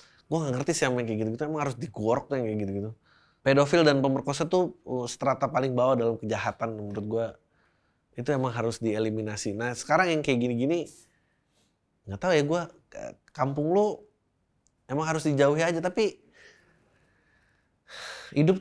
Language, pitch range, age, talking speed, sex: Indonesian, 120-150 Hz, 20-39, 150 wpm, male